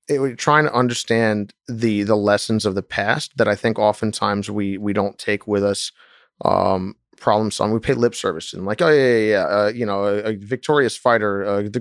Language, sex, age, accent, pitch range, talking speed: English, male, 30-49, American, 105-120 Hz, 225 wpm